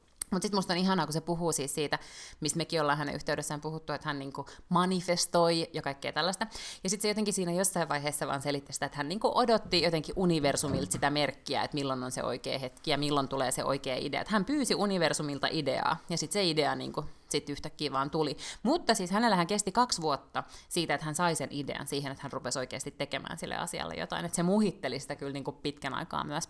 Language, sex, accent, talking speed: Finnish, female, native, 220 wpm